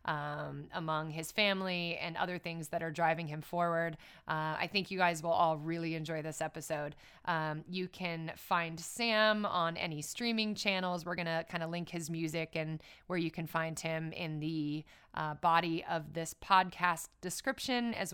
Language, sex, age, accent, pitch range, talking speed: English, female, 20-39, American, 160-180 Hz, 180 wpm